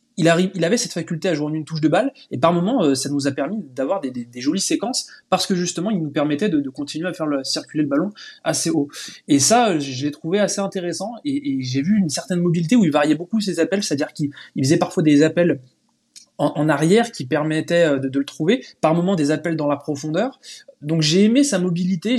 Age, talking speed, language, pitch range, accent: 20-39, 235 wpm, French, 145-190 Hz, French